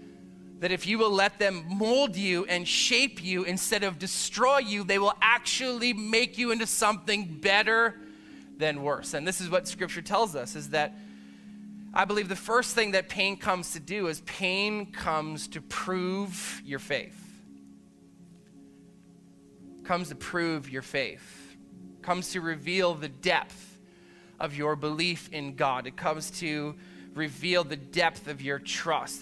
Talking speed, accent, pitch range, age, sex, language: 155 wpm, American, 155-210 Hz, 20-39, male, English